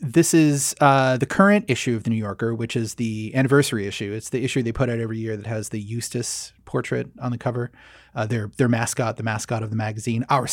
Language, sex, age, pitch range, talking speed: English, male, 30-49, 115-140 Hz, 235 wpm